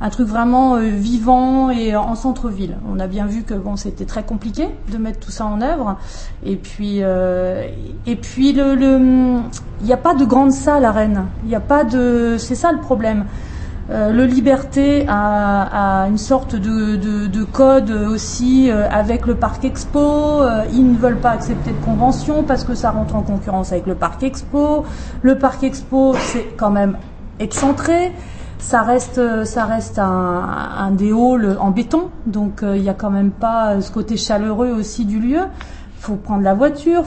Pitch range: 205-255 Hz